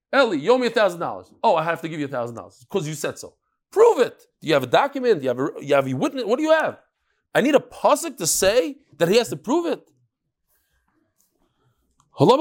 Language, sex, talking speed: English, male, 240 wpm